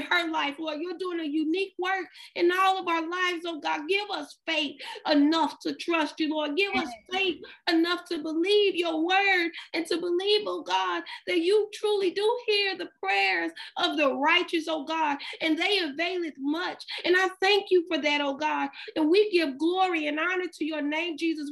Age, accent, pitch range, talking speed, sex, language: 40-59, American, 305-360 Hz, 195 wpm, female, English